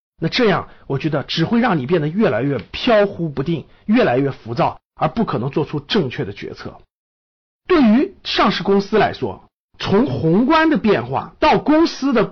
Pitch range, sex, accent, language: 135-215 Hz, male, native, Chinese